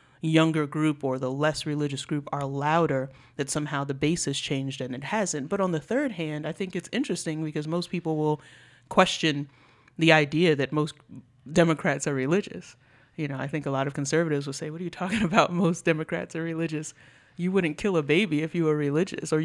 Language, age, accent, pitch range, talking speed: English, 30-49, American, 140-165 Hz, 205 wpm